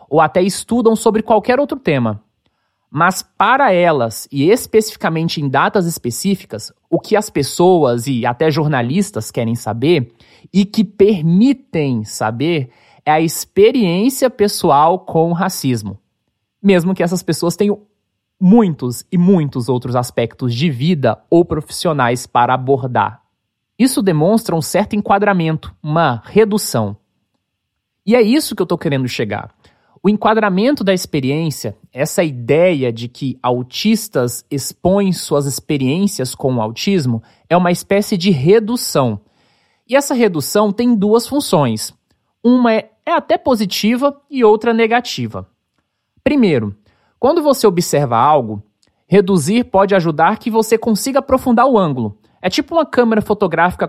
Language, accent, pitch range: Portuguese, Brazilian, 130-215 Hz